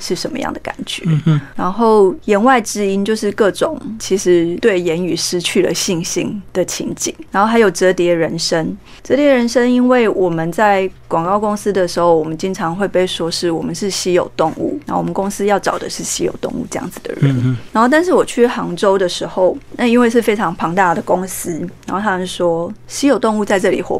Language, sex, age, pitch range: Chinese, female, 30-49, 170-210 Hz